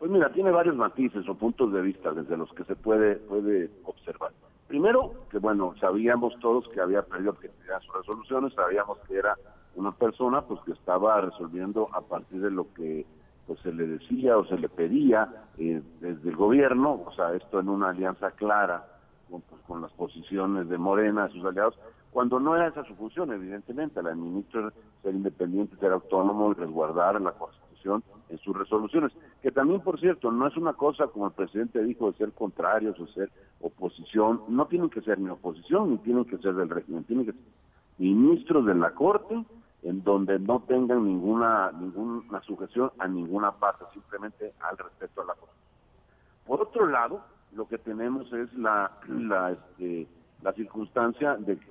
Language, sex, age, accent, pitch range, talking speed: Spanish, male, 50-69, Mexican, 95-120 Hz, 180 wpm